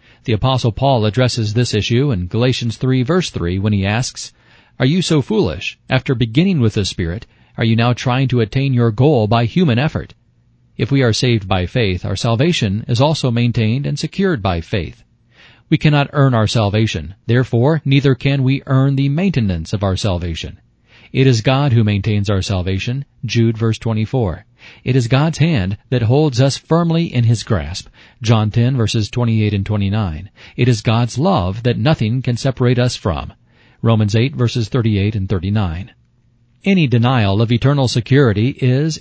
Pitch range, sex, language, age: 110-135 Hz, male, English, 40-59